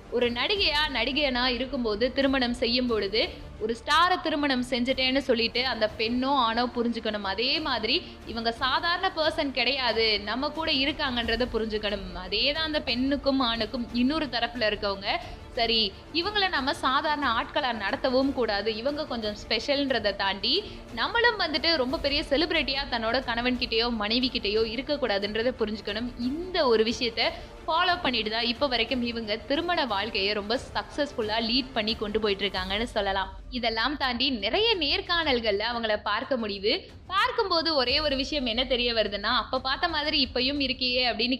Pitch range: 225-290 Hz